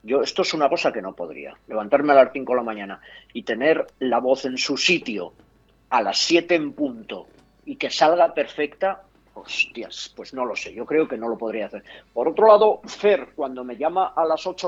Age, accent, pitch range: 40-59, Spanish, 130-180 Hz